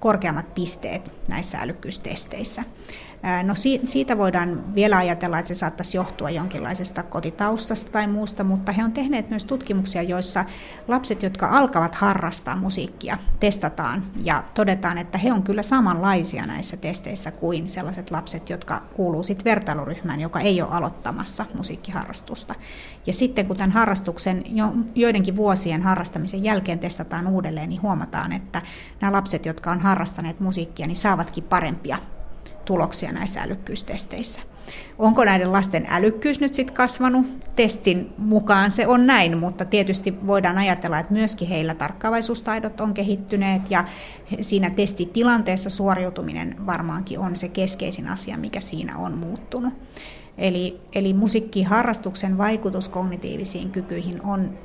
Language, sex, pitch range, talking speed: Finnish, female, 180-210 Hz, 130 wpm